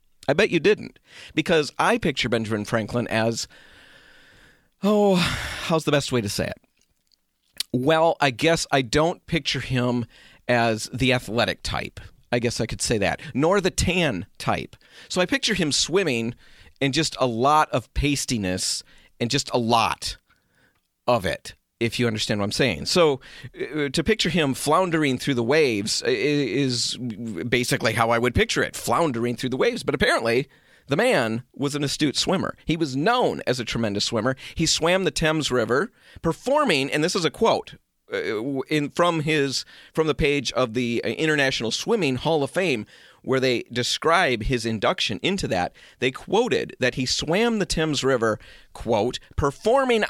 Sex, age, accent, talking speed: male, 40-59, American, 165 wpm